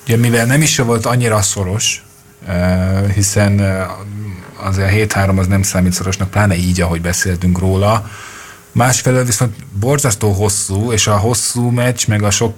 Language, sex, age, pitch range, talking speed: Hungarian, male, 30-49, 100-125 Hz, 150 wpm